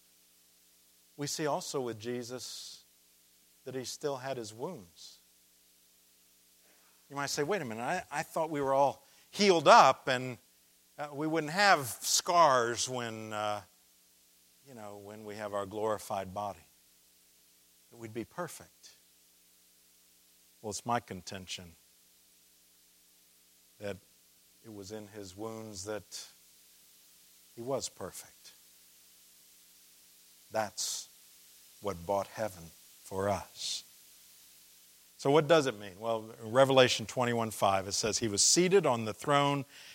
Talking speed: 120 wpm